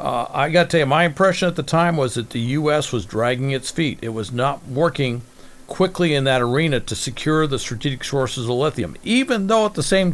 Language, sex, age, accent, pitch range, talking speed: English, male, 50-69, American, 130-160 Hz, 225 wpm